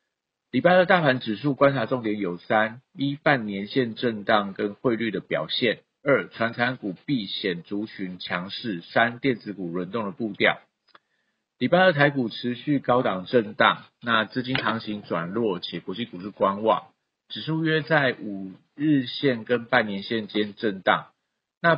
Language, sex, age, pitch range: Chinese, male, 50-69, 105-130 Hz